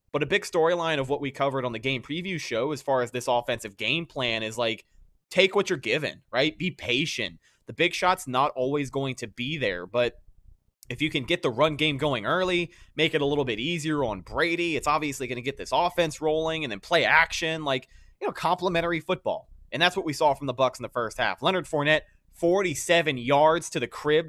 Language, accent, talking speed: English, American, 225 wpm